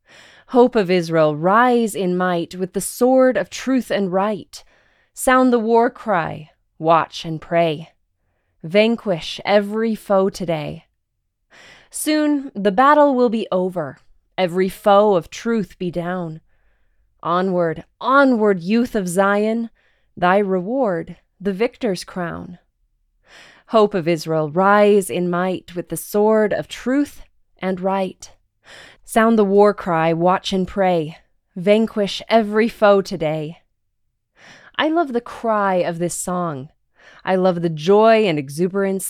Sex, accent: female, American